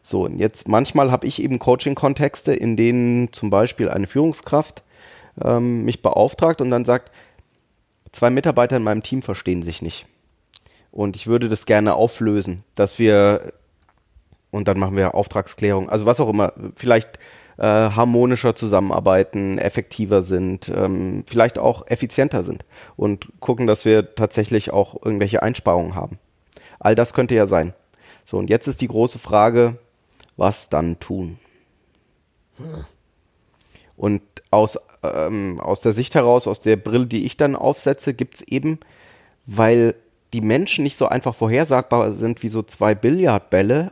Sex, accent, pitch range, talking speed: male, German, 100-125 Hz, 150 wpm